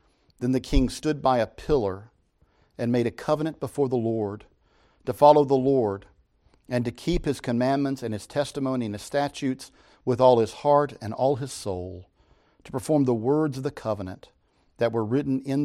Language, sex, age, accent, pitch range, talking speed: English, male, 50-69, American, 105-140 Hz, 185 wpm